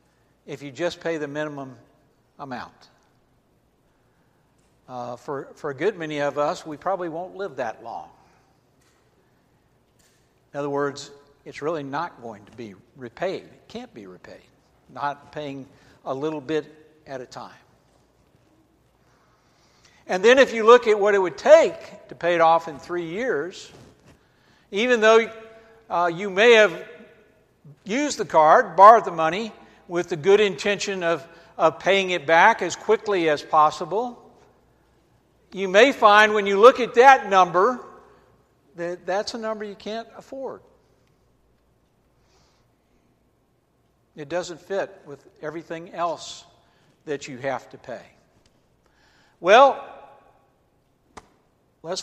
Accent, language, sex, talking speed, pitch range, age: American, English, male, 130 wpm, 150-205 Hz, 60-79